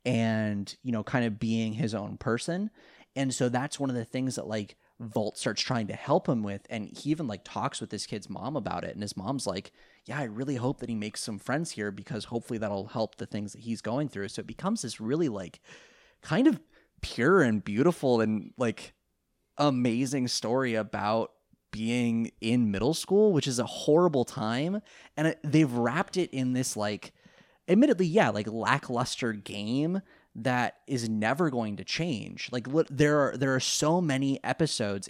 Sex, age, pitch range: male, 20-39, 110-150 Hz